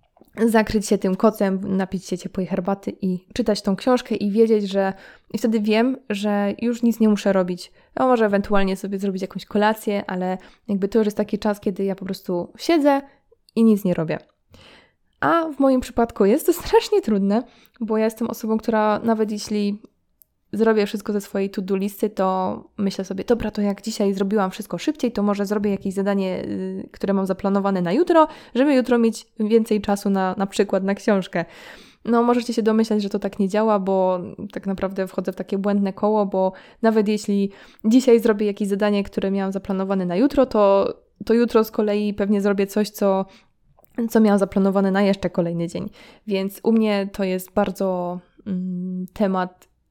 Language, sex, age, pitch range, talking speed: Polish, female, 20-39, 195-225 Hz, 180 wpm